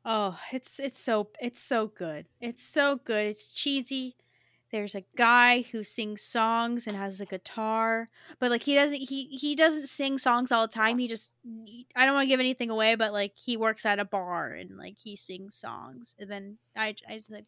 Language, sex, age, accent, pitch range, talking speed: English, female, 20-39, American, 200-245 Hz, 215 wpm